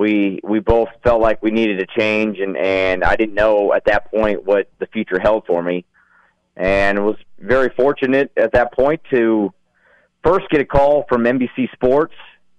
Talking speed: 180 wpm